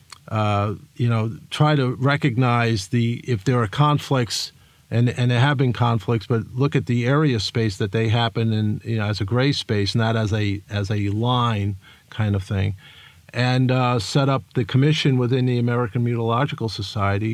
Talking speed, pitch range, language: 185 wpm, 105-125 Hz, English